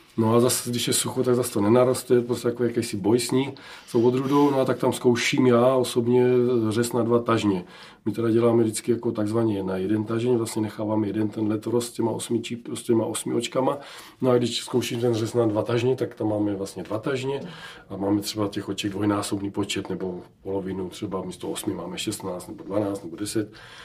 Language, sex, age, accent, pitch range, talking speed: Czech, male, 40-59, native, 110-125 Hz, 210 wpm